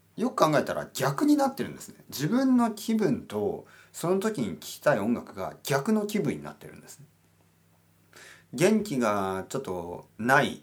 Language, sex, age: Japanese, male, 40-59